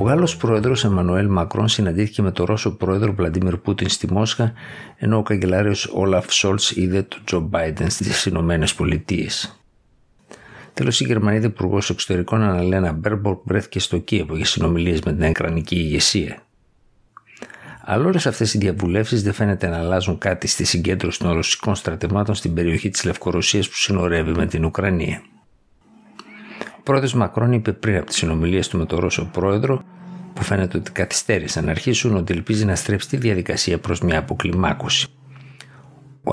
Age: 60-79